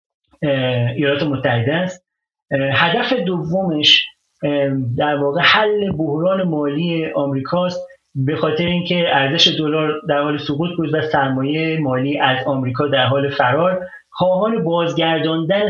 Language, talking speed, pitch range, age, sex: Persian, 120 wpm, 140-185 Hz, 40-59, male